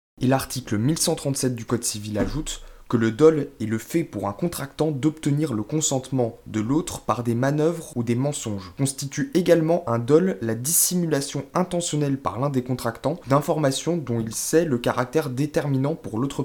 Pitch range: 125-165 Hz